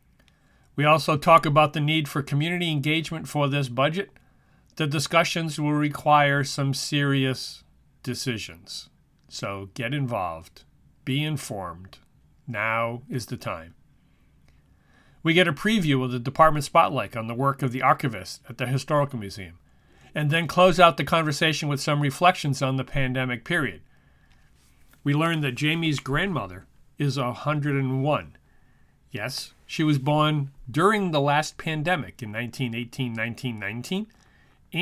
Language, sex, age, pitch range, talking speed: English, male, 40-59, 125-160 Hz, 130 wpm